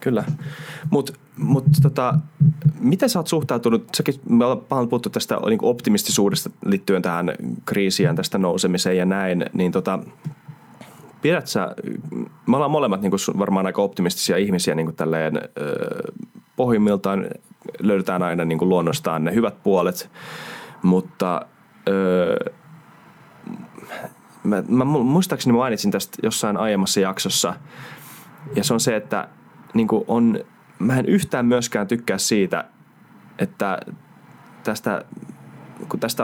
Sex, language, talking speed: male, Finnish, 120 wpm